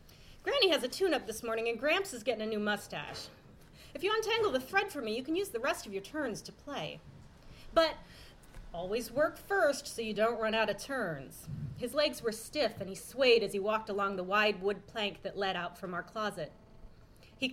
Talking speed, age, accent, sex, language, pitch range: 215 wpm, 30-49, American, female, English, 195-250 Hz